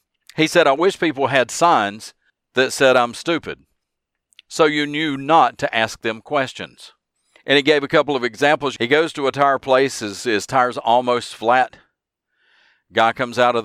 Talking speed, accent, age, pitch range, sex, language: 180 wpm, American, 50-69, 115-150 Hz, male, English